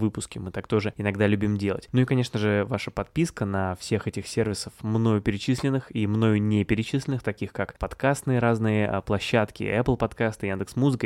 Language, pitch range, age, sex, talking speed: Russian, 105-120 Hz, 20-39, male, 170 wpm